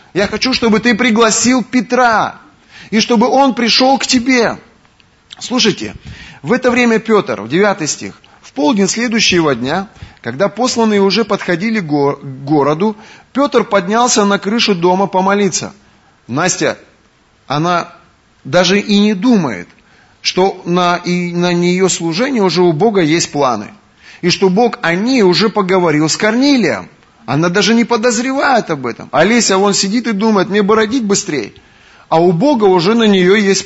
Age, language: 30-49, Russian